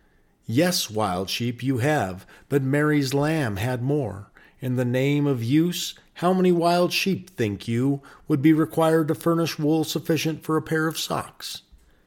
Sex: male